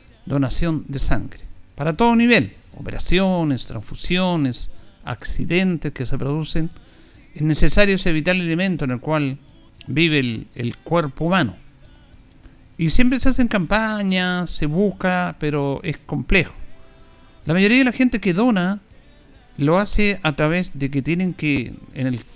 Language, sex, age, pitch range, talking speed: Spanish, male, 50-69, 130-180 Hz, 140 wpm